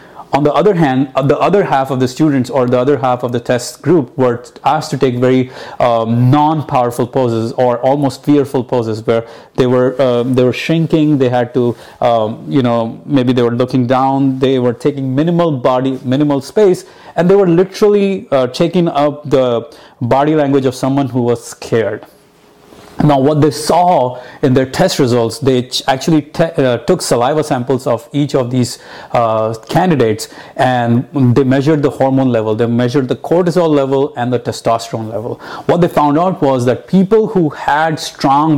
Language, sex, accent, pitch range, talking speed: English, male, Indian, 125-155 Hz, 180 wpm